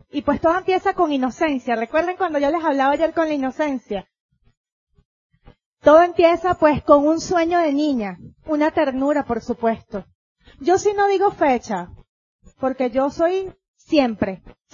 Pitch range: 265-345 Hz